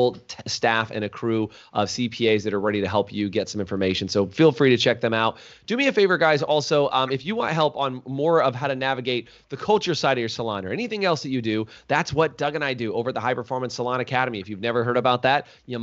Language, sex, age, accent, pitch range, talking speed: English, male, 30-49, American, 115-140 Hz, 270 wpm